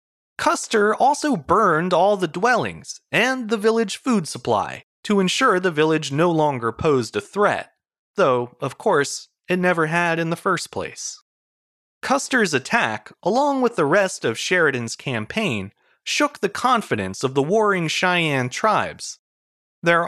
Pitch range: 140-220 Hz